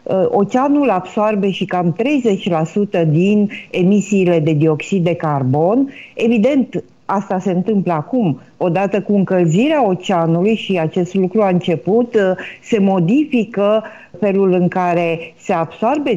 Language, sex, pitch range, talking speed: Romanian, female, 175-215 Hz, 120 wpm